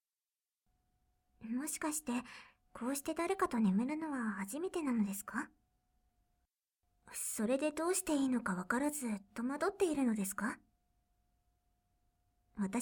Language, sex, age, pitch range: Japanese, male, 40-59, 215-295 Hz